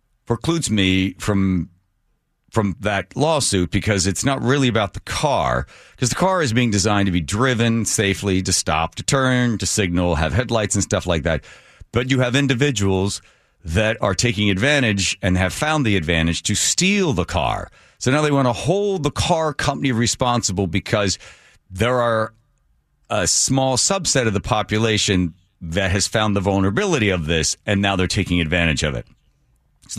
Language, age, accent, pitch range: English, 40-59, American, 95-130 Hz